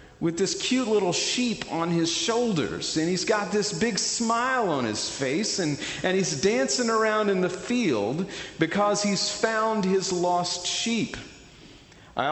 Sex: male